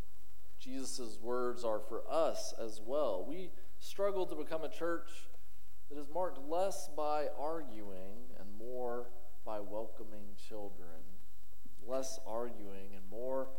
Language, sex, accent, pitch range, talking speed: English, male, American, 100-140 Hz, 125 wpm